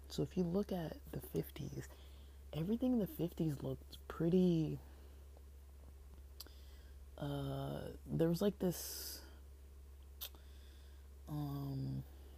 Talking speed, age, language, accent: 90 wpm, 20-39, English, American